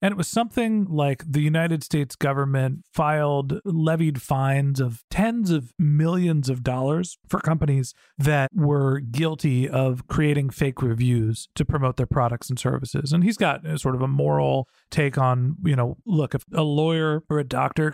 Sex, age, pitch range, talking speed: male, 40-59, 130-160 Hz, 170 wpm